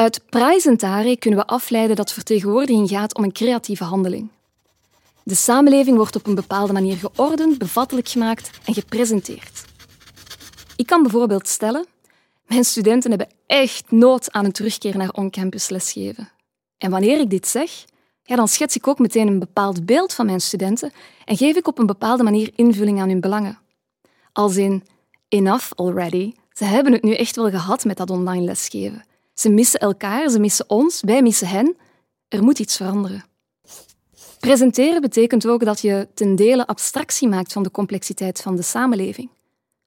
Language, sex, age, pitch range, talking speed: Dutch, female, 20-39, 195-240 Hz, 165 wpm